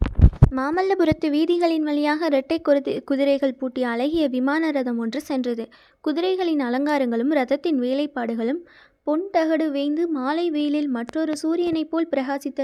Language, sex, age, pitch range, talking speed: Tamil, female, 20-39, 265-310 Hz, 110 wpm